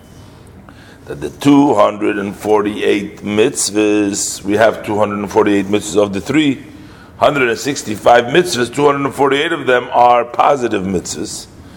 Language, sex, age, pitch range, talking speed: English, male, 50-69, 105-140 Hz, 90 wpm